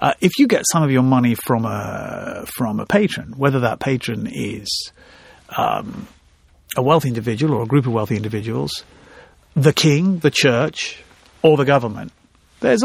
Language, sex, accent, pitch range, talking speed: English, male, British, 115-175 Hz, 165 wpm